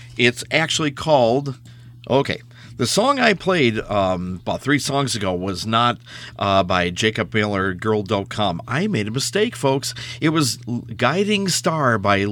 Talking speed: 145 wpm